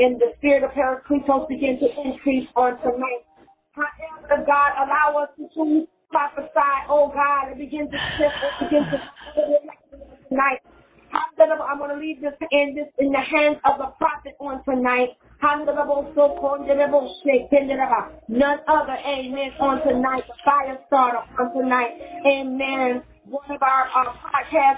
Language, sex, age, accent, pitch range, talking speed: English, female, 40-59, American, 250-290 Hz, 145 wpm